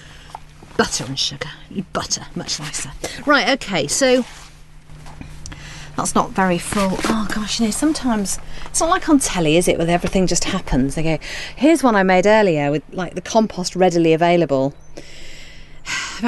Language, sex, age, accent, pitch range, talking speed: English, female, 40-59, British, 150-215 Hz, 155 wpm